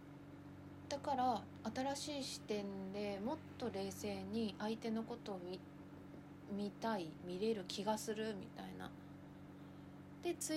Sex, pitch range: female, 175-235 Hz